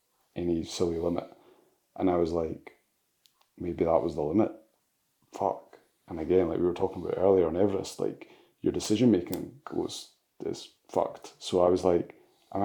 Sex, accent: male, British